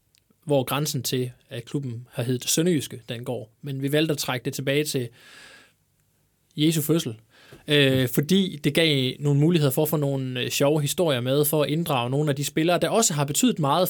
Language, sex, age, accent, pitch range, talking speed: Danish, male, 20-39, native, 130-160 Hz, 195 wpm